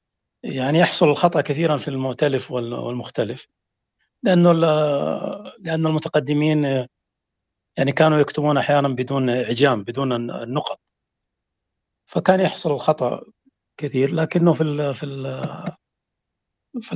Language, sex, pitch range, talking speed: English, male, 125-170 Hz, 85 wpm